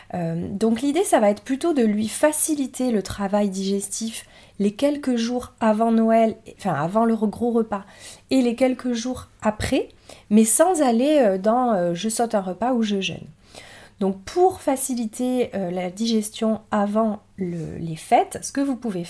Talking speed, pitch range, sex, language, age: 165 wpm, 185-240 Hz, female, French, 30-49